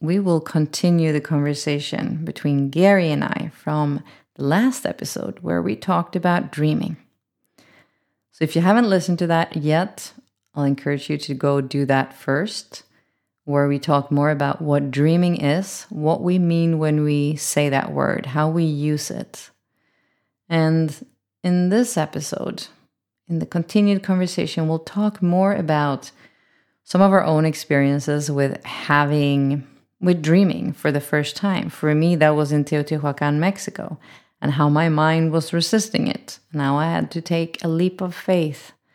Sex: female